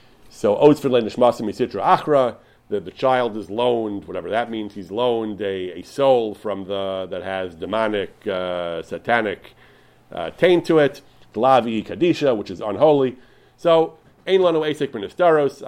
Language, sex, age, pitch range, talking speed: English, male, 40-59, 120-160 Hz, 135 wpm